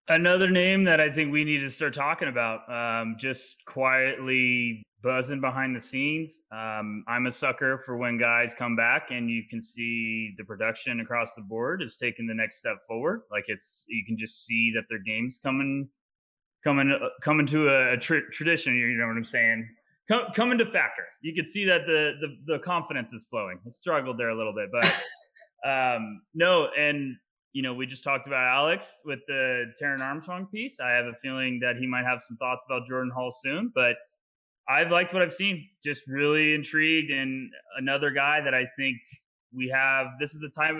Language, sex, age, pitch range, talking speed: English, male, 20-39, 115-150 Hz, 195 wpm